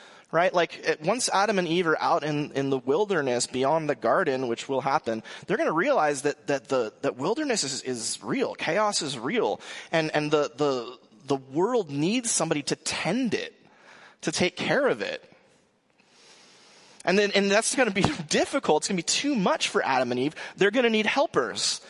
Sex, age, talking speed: male, 30-49, 195 wpm